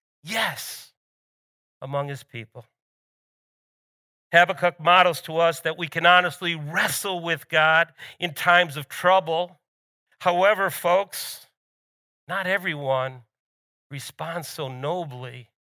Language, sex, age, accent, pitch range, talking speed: English, male, 50-69, American, 145-190 Hz, 100 wpm